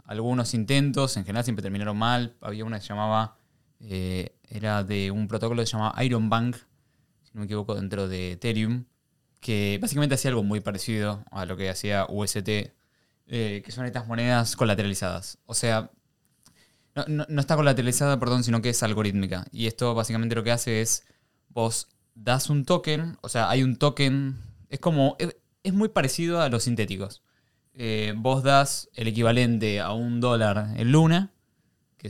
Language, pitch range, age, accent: Spanish, 105-130 Hz, 20-39, Argentinian